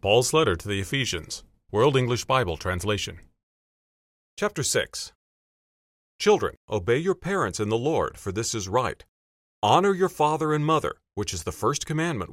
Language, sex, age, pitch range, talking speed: English, male, 40-59, 95-160 Hz, 155 wpm